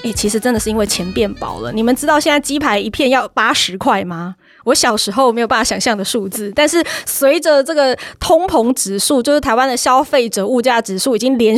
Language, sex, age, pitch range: Chinese, female, 20-39, 210-265 Hz